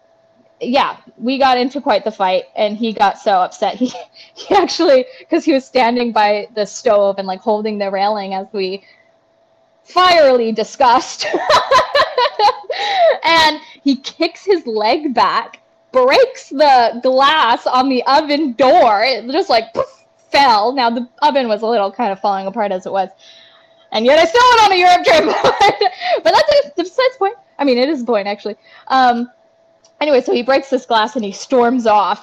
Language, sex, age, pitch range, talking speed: English, female, 10-29, 230-330 Hz, 175 wpm